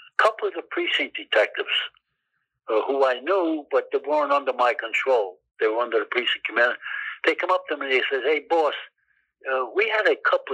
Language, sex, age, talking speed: English, male, 60-79, 205 wpm